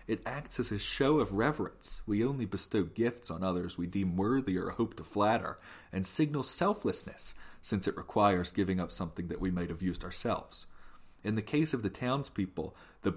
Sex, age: male, 30-49